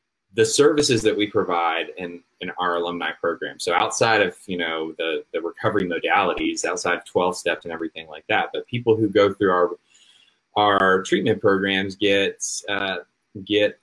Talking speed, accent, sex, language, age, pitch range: 170 wpm, American, male, English, 30-49, 90-120 Hz